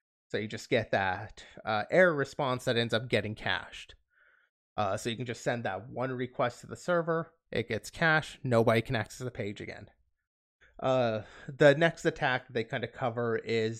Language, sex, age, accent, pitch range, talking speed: English, male, 20-39, American, 115-135 Hz, 185 wpm